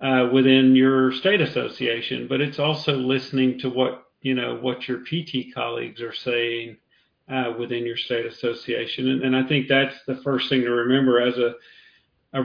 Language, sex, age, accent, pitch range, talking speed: English, male, 40-59, American, 125-145 Hz, 180 wpm